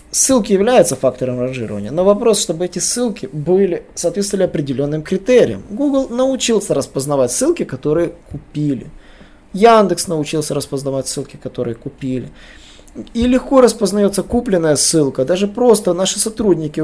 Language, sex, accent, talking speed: Russian, male, native, 120 wpm